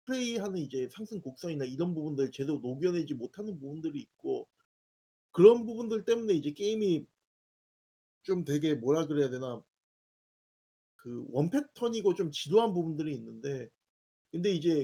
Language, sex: Korean, male